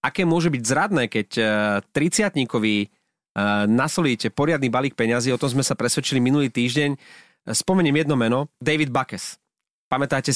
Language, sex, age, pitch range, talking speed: Slovak, male, 30-49, 125-150 Hz, 135 wpm